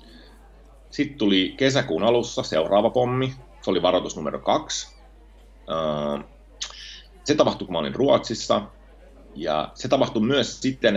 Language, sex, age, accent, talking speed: Finnish, male, 30-49, native, 115 wpm